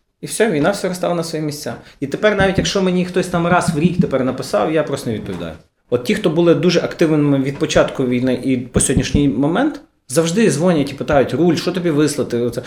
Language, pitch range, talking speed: Ukrainian, 135-180 Hz, 215 wpm